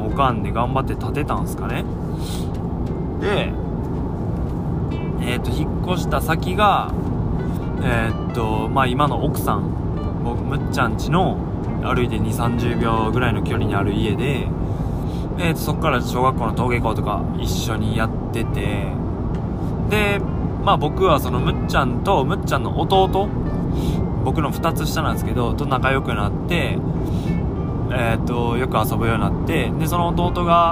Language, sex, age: Japanese, male, 20-39